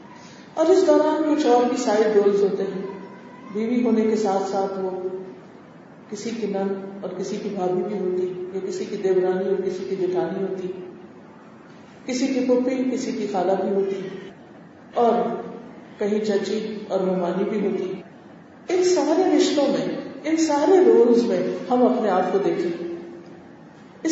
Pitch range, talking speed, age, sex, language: 195-260 Hz, 65 wpm, 50-69, female, Urdu